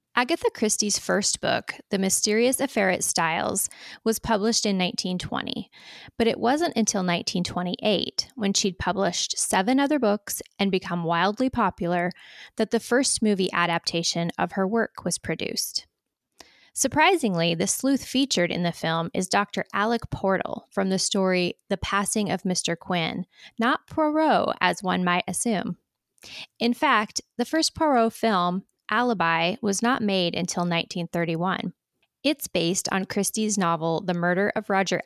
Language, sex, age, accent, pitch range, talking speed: English, female, 20-39, American, 175-235 Hz, 145 wpm